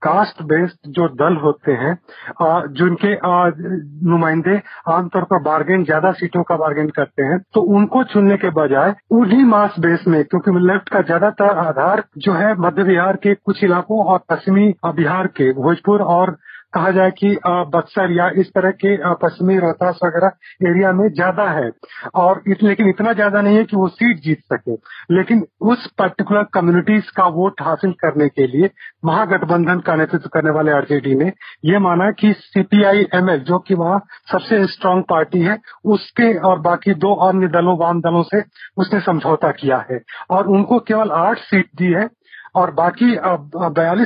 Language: Hindi